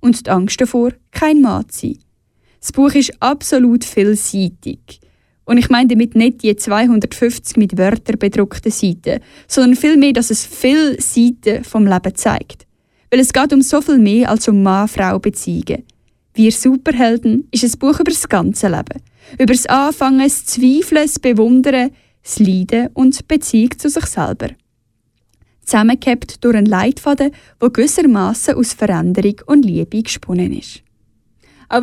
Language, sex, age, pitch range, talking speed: German, female, 10-29, 205-265 Hz, 155 wpm